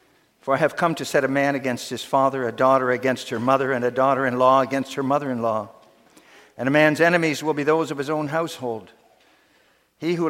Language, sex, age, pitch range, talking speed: English, male, 60-79, 125-155 Hz, 205 wpm